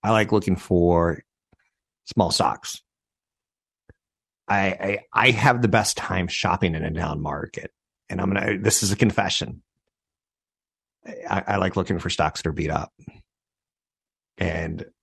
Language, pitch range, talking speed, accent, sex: English, 90-110 Hz, 145 wpm, American, male